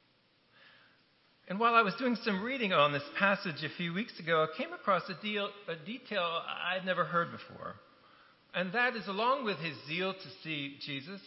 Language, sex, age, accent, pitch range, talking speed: English, male, 50-69, American, 165-205 Hz, 180 wpm